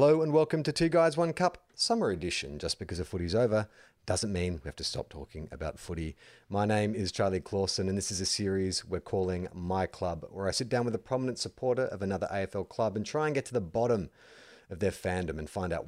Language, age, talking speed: English, 30-49, 240 wpm